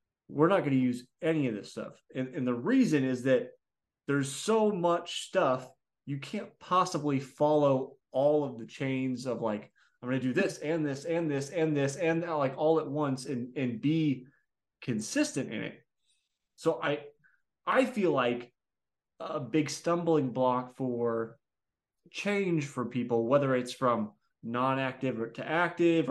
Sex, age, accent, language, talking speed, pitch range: male, 30-49, American, English, 170 wpm, 120-150 Hz